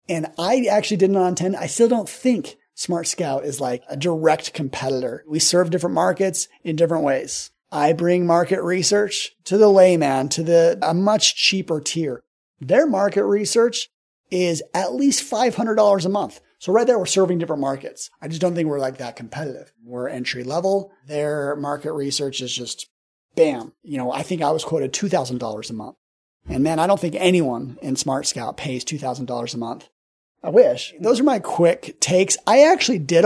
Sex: male